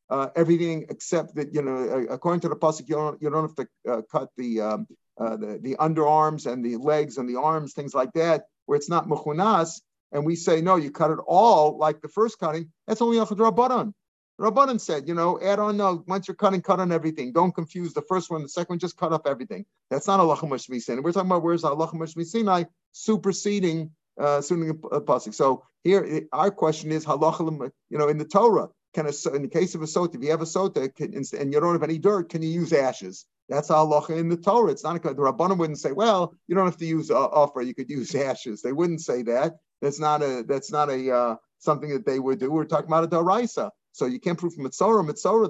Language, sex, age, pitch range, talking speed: English, male, 50-69, 150-185 Hz, 240 wpm